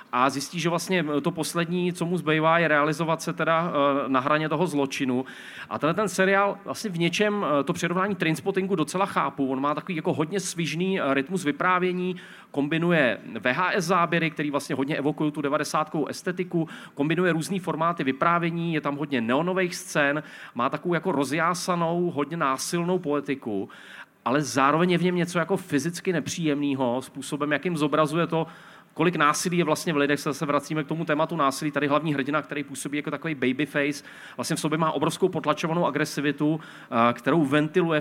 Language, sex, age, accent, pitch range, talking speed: Czech, male, 40-59, native, 140-170 Hz, 165 wpm